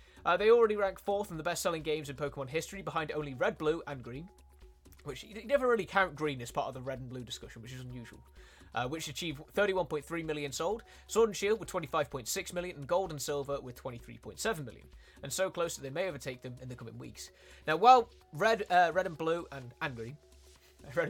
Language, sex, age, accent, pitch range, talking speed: Italian, male, 20-39, British, 125-180 Hz, 220 wpm